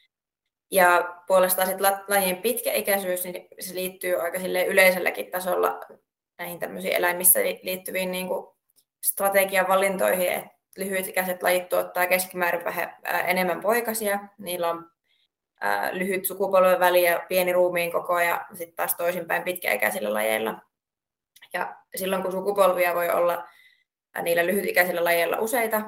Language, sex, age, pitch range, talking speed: Finnish, female, 20-39, 175-195 Hz, 115 wpm